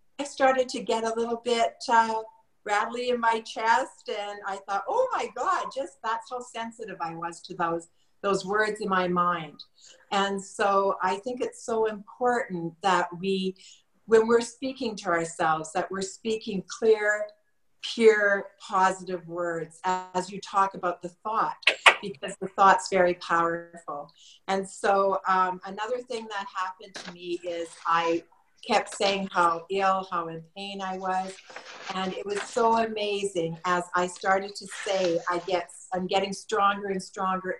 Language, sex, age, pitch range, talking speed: English, female, 50-69, 180-225 Hz, 155 wpm